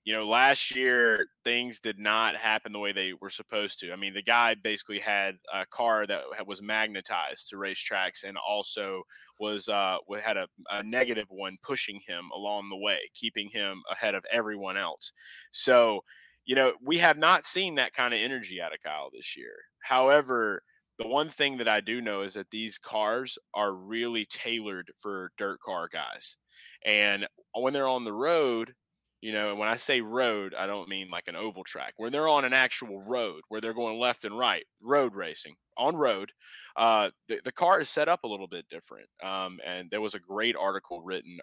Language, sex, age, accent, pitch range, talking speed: English, male, 20-39, American, 100-120 Hz, 200 wpm